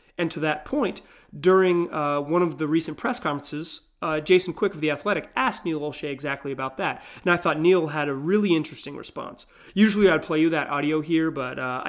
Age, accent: 30-49, American